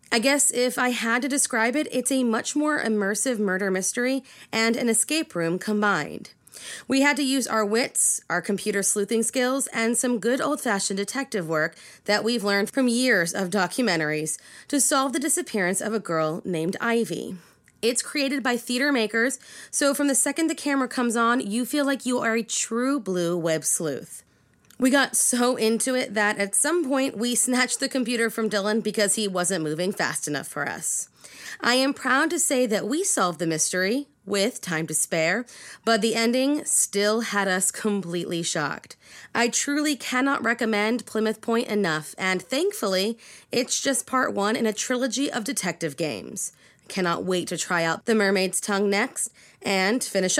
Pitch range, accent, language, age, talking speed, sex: 195-260 Hz, American, English, 30-49, 180 wpm, female